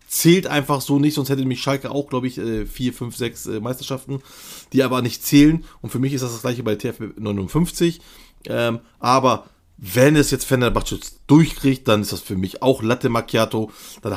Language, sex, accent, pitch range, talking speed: German, male, German, 110-145 Hz, 185 wpm